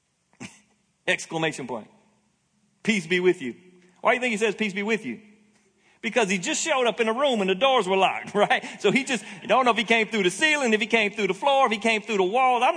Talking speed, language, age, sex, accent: 255 wpm, English, 40-59, male, American